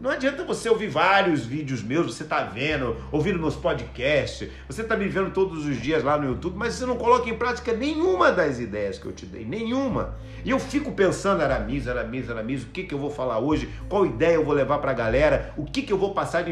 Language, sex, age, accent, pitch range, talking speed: Portuguese, male, 50-69, Brazilian, 130-220 Hz, 240 wpm